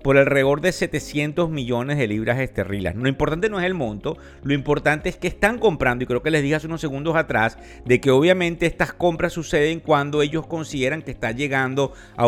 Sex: male